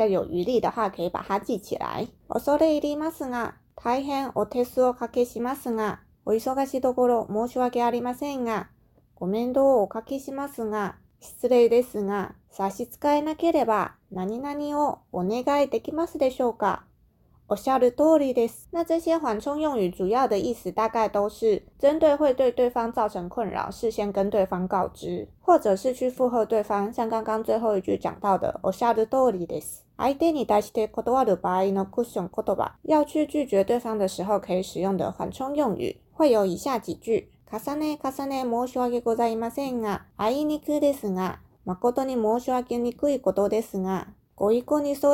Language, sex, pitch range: Chinese, female, 205-275 Hz